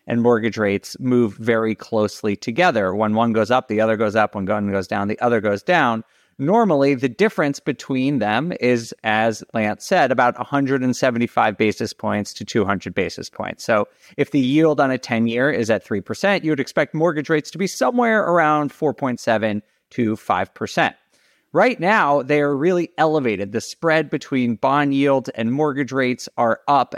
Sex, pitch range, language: male, 115-150 Hz, English